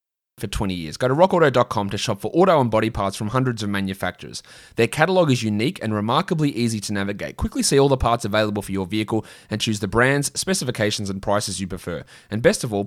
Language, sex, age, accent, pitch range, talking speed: English, male, 20-39, Australian, 105-135 Hz, 225 wpm